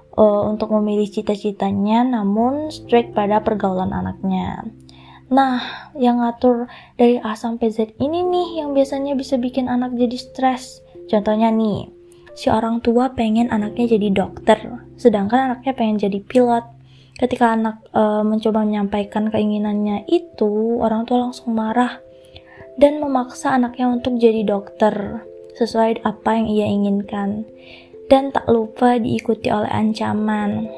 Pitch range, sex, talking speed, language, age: 210-250 Hz, female, 130 wpm, Indonesian, 20-39